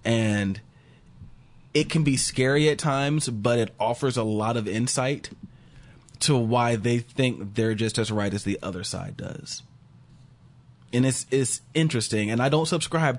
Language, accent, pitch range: English, American, 110-135 Hz